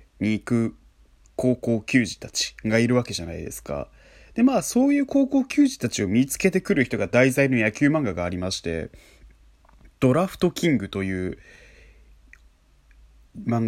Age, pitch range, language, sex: 20-39, 90-135 Hz, Japanese, male